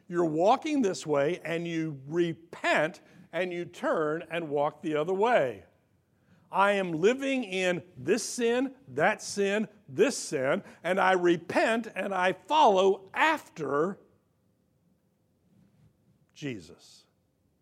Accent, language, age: American, English, 60-79